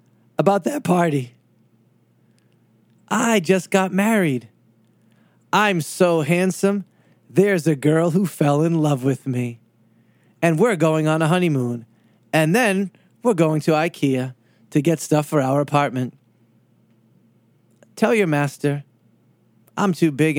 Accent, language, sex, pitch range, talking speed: American, English, male, 115-150 Hz, 125 wpm